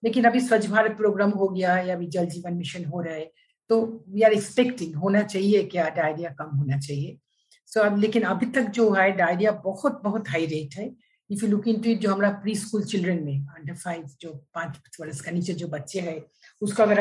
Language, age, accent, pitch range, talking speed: Hindi, 50-69, native, 165-220 Hz, 220 wpm